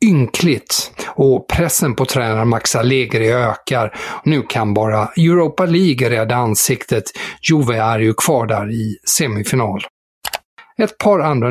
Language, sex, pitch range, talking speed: Swedish, male, 120-160 Hz, 130 wpm